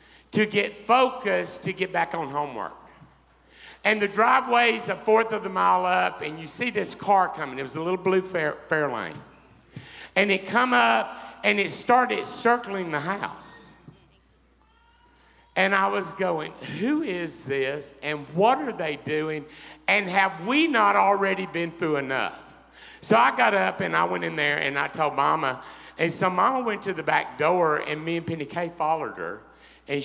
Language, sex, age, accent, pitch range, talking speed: English, male, 50-69, American, 150-210 Hz, 180 wpm